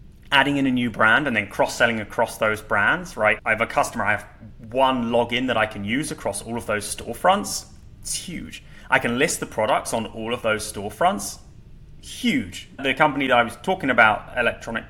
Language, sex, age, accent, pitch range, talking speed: English, male, 30-49, British, 110-135 Hz, 205 wpm